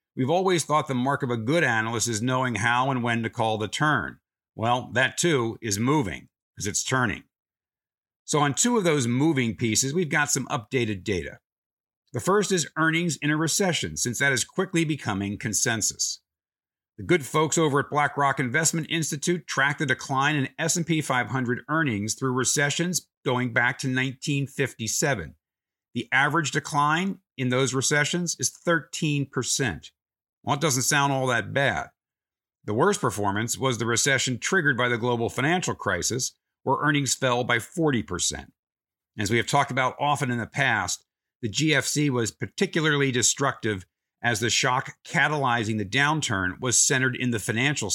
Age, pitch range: 50-69, 115-150 Hz